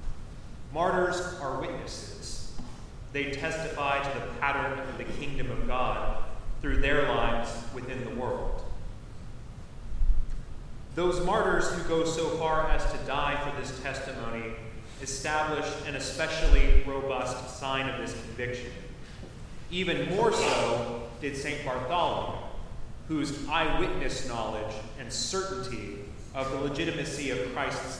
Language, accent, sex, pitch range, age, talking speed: English, American, male, 115-145 Hz, 30-49, 120 wpm